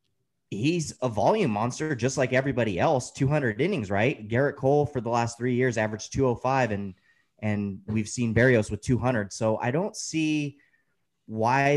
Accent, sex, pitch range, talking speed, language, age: American, male, 110-145 Hz, 165 wpm, English, 30-49